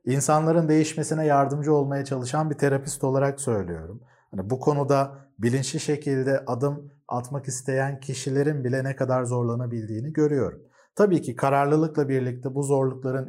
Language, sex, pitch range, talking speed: Turkish, male, 130-155 Hz, 130 wpm